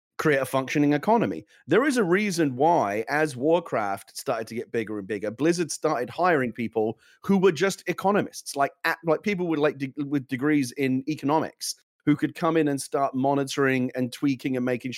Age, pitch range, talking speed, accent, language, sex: 30-49, 125-155 Hz, 180 wpm, British, English, male